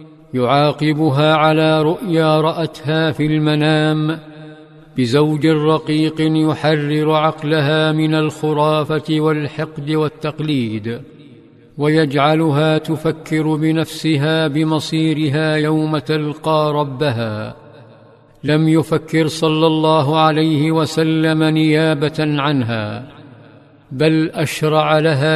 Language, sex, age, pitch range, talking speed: Arabic, male, 50-69, 150-160 Hz, 75 wpm